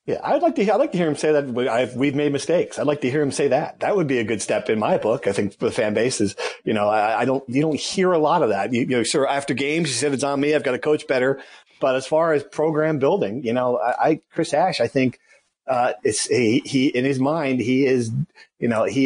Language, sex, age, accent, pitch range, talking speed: English, male, 40-59, American, 130-160 Hz, 285 wpm